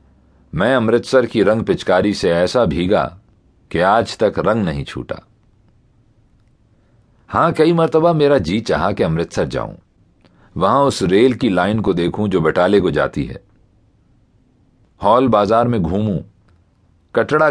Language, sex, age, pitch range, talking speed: Urdu, male, 40-59, 95-120 Hz, 135 wpm